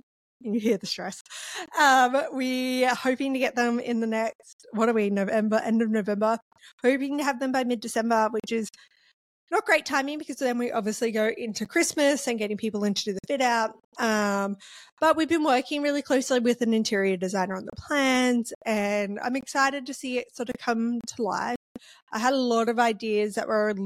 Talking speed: 205 wpm